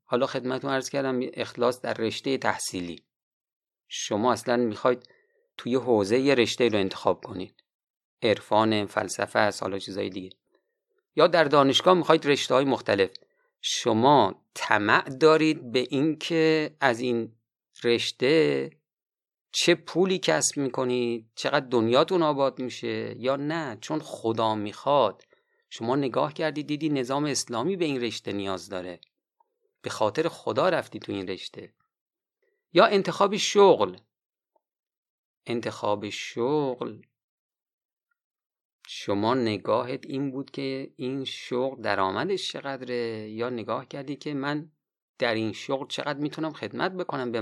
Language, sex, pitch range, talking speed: Persian, male, 115-165 Hz, 125 wpm